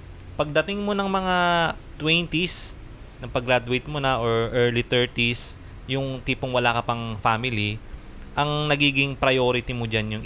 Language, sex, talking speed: English, male, 130 wpm